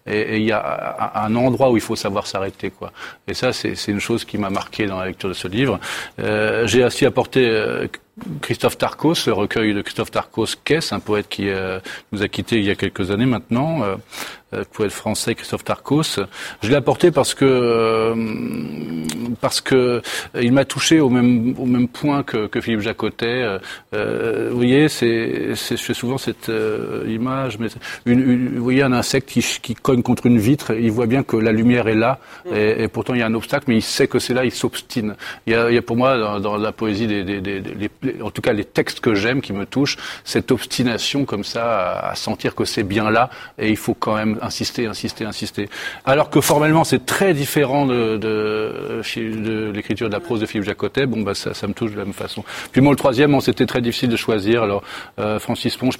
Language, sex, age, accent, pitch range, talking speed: French, male, 40-59, French, 105-125 Hz, 230 wpm